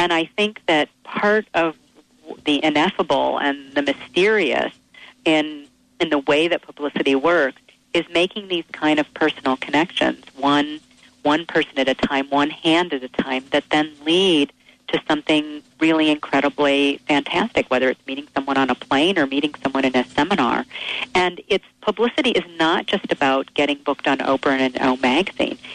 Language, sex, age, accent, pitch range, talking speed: English, female, 40-59, American, 145-195 Hz, 165 wpm